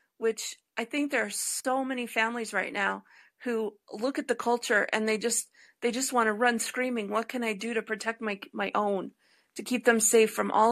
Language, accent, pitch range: English, American, 220-260 Hz